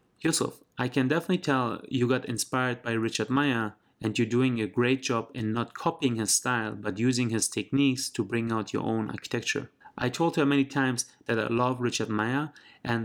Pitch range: 110-135 Hz